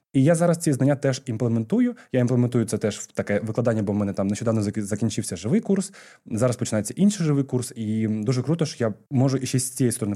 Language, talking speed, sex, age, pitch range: Ukrainian, 225 wpm, male, 20-39, 110-140 Hz